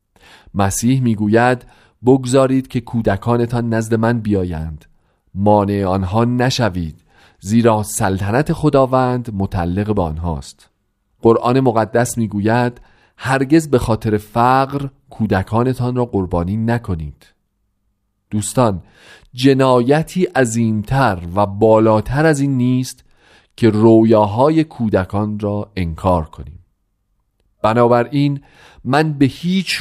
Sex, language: male, Persian